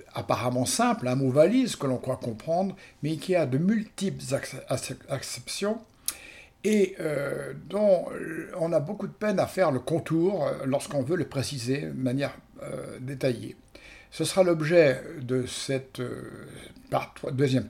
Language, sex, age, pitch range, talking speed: French, male, 60-79, 130-170 Hz, 150 wpm